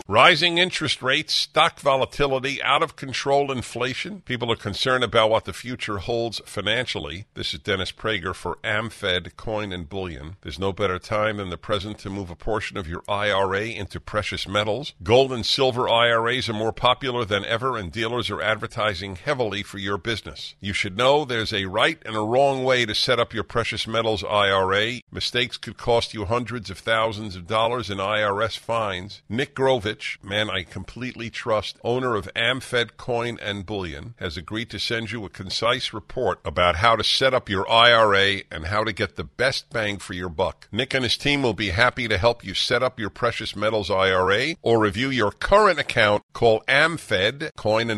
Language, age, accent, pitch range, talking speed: English, 50-69, American, 100-125 Hz, 185 wpm